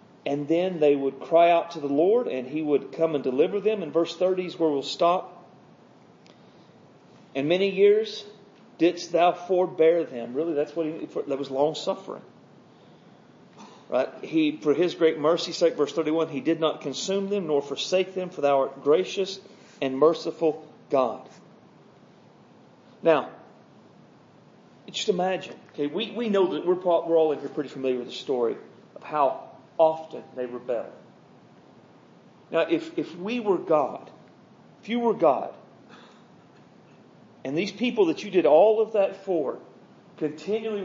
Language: English